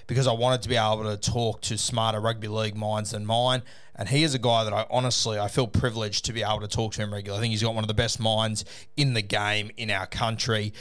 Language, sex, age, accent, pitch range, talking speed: English, male, 20-39, Australian, 110-130 Hz, 270 wpm